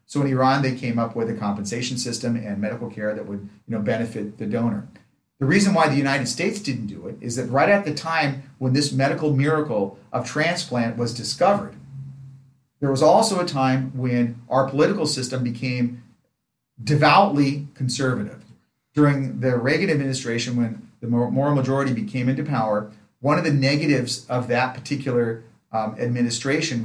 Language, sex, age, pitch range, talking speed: English, male, 40-59, 115-140 Hz, 165 wpm